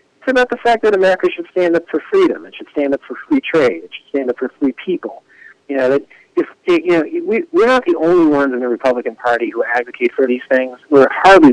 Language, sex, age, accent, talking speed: English, male, 50-69, American, 245 wpm